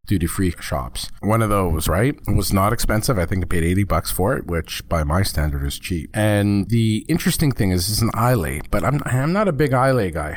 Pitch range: 90-120 Hz